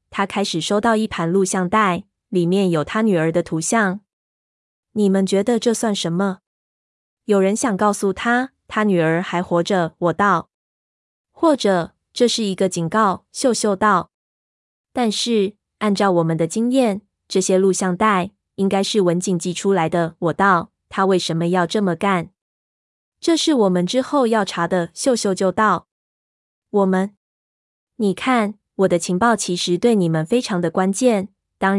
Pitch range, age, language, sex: 175-210 Hz, 20-39, Chinese, female